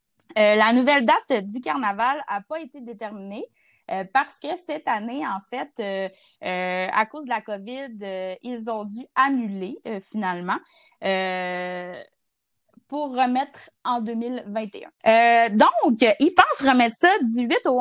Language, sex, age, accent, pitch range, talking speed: French, female, 20-39, Canadian, 210-270 Hz, 150 wpm